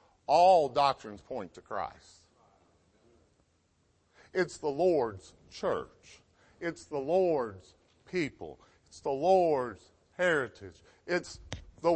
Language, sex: English, male